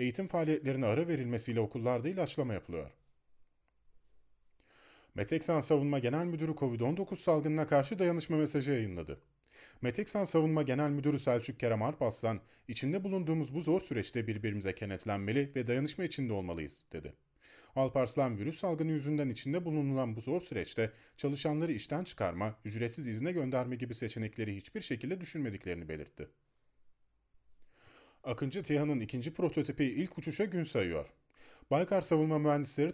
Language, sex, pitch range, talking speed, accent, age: Turkish, male, 120-155 Hz, 125 wpm, native, 30-49